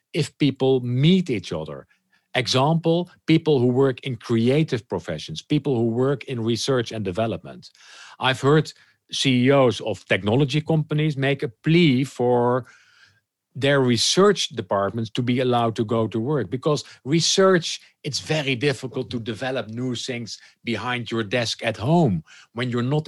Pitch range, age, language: 115-160 Hz, 50-69, English